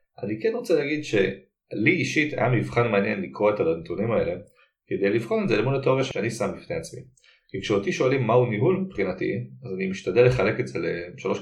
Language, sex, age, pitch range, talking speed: Hebrew, male, 30-49, 110-175 Hz, 190 wpm